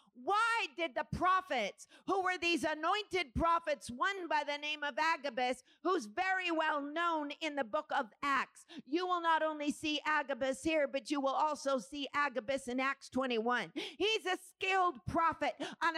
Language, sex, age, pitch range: English, female, 50-69, 310-400 Hz